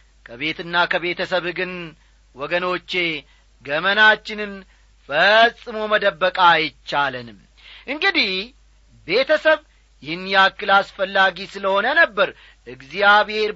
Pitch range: 170-230 Hz